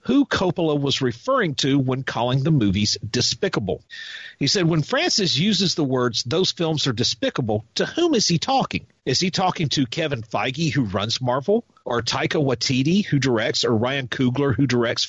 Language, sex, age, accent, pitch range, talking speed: English, male, 50-69, American, 125-175 Hz, 180 wpm